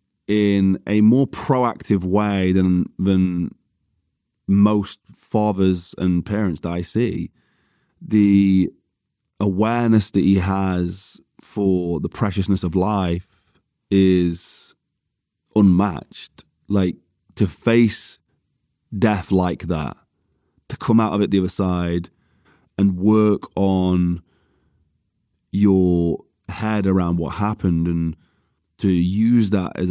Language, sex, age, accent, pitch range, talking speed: English, male, 30-49, British, 85-100 Hz, 105 wpm